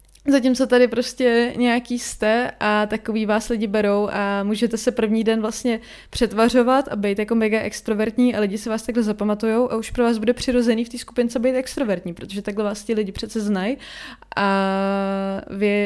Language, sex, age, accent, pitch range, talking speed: Czech, female, 20-39, native, 205-235 Hz, 180 wpm